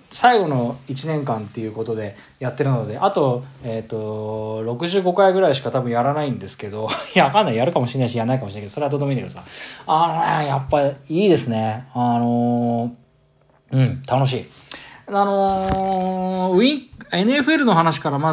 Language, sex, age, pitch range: Japanese, male, 20-39, 115-165 Hz